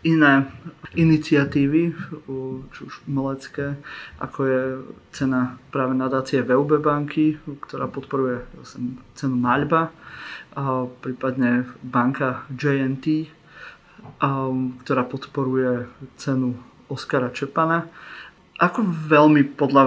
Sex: male